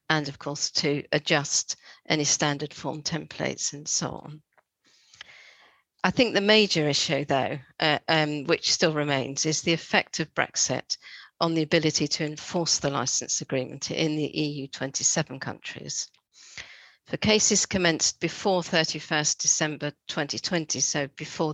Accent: British